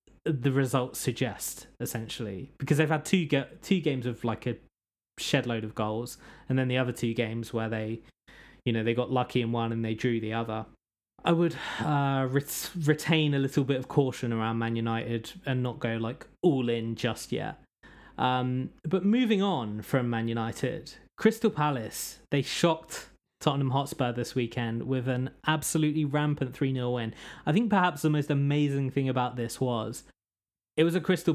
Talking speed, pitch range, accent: 180 wpm, 120-150 Hz, British